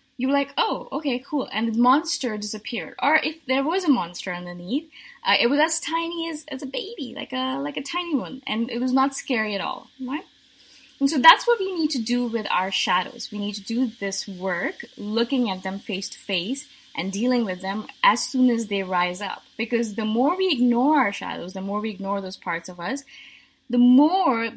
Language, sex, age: English, female, 20-39